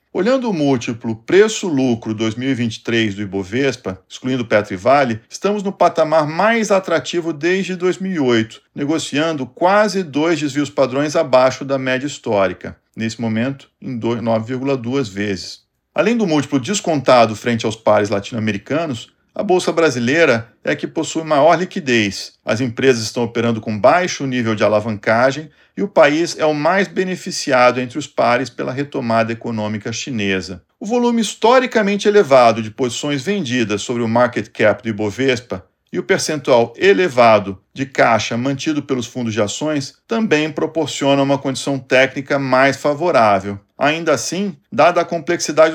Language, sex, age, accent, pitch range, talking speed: Portuguese, male, 50-69, Brazilian, 115-160 Hz, 140 wpm